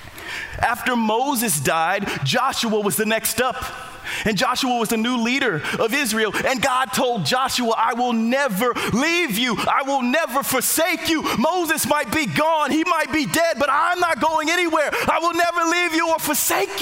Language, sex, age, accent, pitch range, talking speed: English, male, 30-49, American, 225-295 Hz, 180 wpm